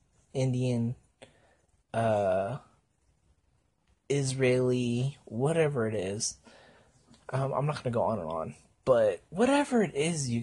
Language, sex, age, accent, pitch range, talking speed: English, male, 30-49, American, 130-215 Hz, 110 wpm